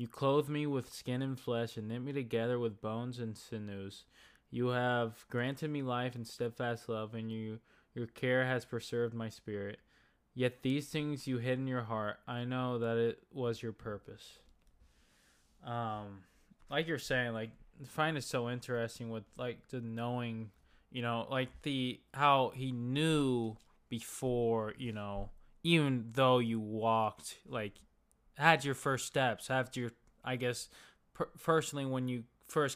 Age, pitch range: 10-29, 115-130 Hz